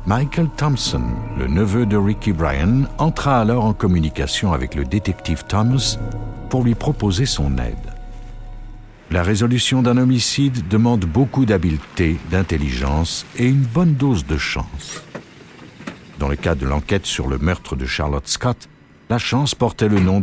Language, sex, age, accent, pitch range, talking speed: French, male, 60-79, French, 80-125 Hz, 150 wpm